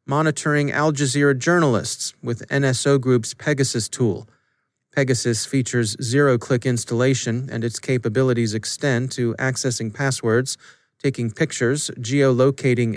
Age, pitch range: 40-59, 120-145 Hz